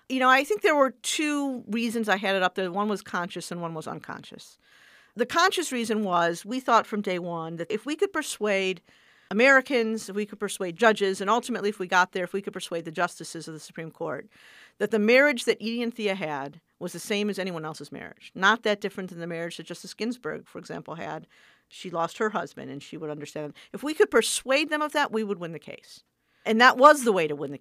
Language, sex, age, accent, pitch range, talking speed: English, female, 50-69, American, 180-240 Hz, 240 wpm